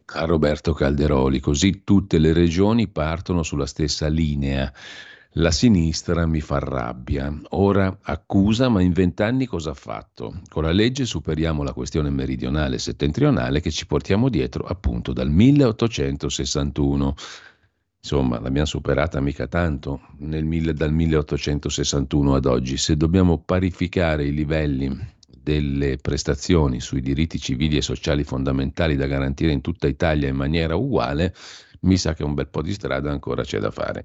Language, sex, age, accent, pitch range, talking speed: Italian, male, 50-69, native, 70-85 Hz, 150 wpm